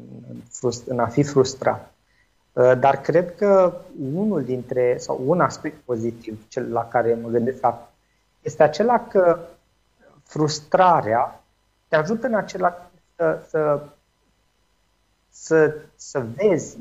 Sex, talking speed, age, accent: male, 110 wpm, 30-49, native